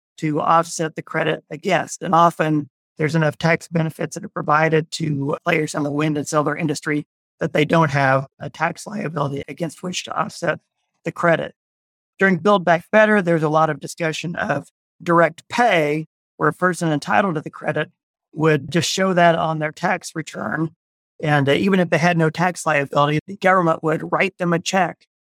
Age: 40-59